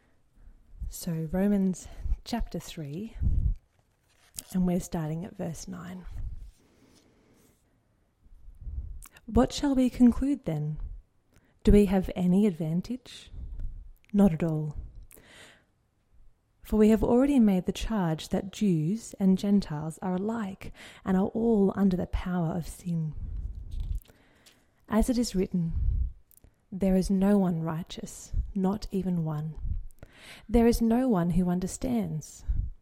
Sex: female